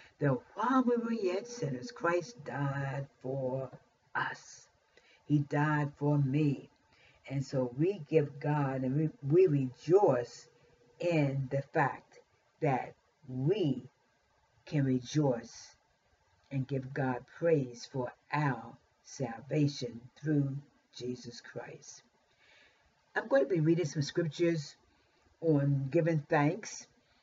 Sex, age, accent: female, 50-69, American